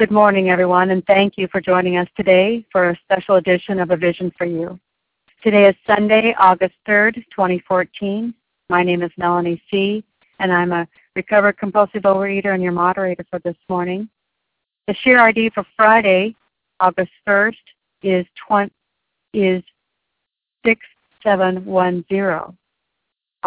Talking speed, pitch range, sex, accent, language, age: 135 wpm, 180-205 Hz, female, American, English, 60-79